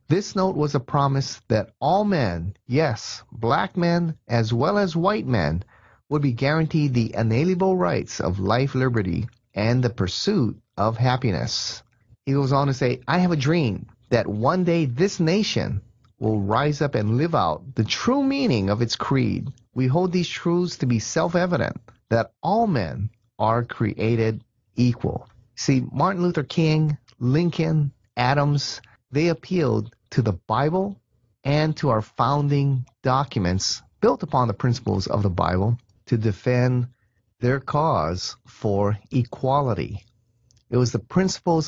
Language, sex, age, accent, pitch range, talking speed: English, male, 30-49, American, 110-150 Hz, 150 wpm